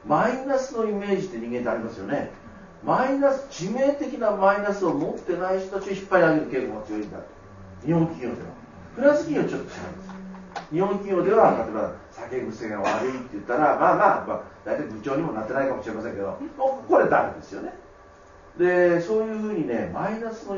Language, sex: Japanese, male